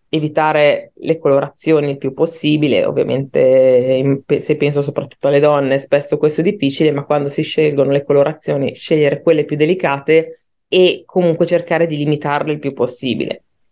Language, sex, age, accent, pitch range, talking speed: Italian, female, 20-39, native, 145-170 Hz, 150 wpm